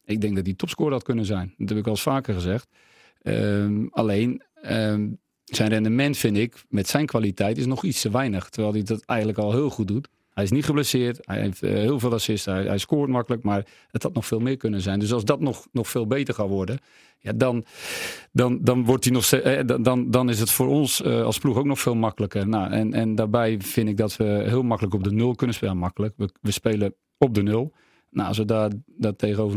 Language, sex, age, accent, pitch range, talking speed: Dutch, male, 40-59, Dutch, 105-125 Hz, 230 wpm